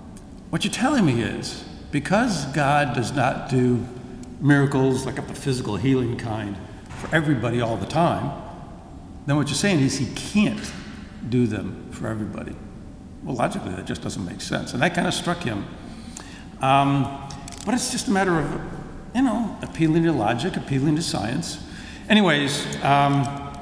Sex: male